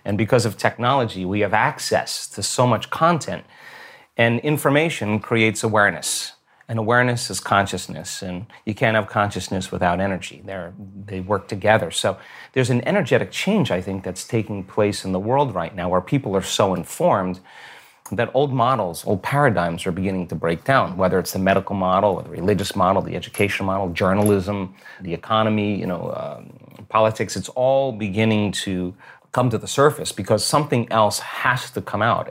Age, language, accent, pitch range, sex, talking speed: 30-49, English, American, 95-115 Hz, male, 170 wpm